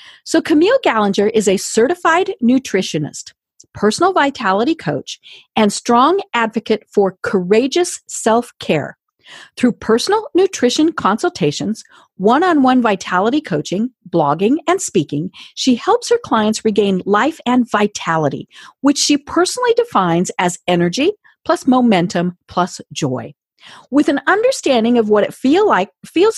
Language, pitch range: English, 195-320 Hz